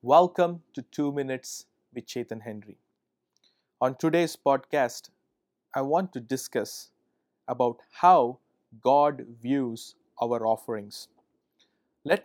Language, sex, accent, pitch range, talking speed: English, male, Indian, 125-165 Hz, 105 wpm